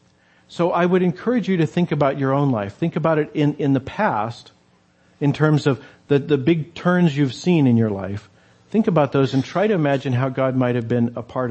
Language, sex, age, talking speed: English, male, 50-69, 230 wpm